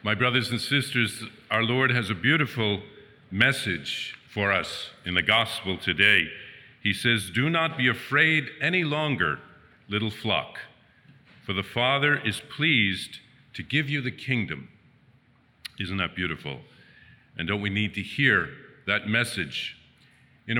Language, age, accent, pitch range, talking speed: English, 50-69, American, 105-140 Hz, 140 wpm